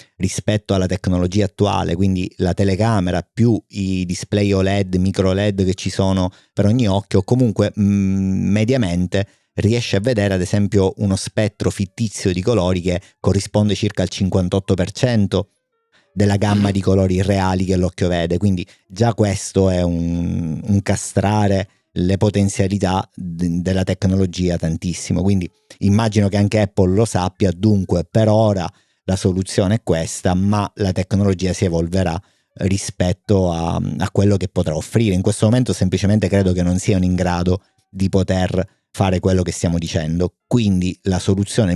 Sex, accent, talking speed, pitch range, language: male, native, 145 wpm, 90-105 Hz, Italian